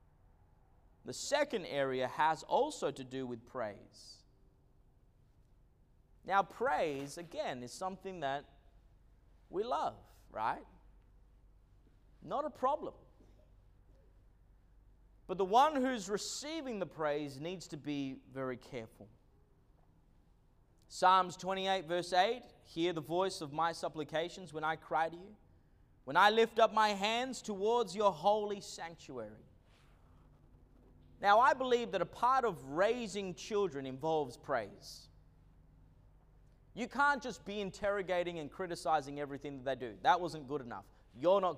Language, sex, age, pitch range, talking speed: English, male, 30-49, 135-215 Hz, 125 wpm